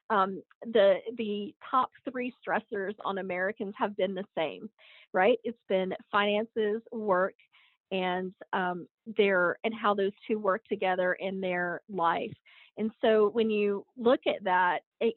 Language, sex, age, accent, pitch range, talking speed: English, female, 40-59, American, 190-235 Hz, 145 wpm